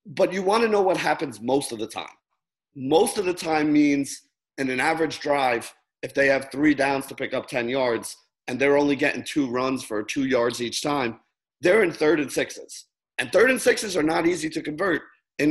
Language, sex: English, male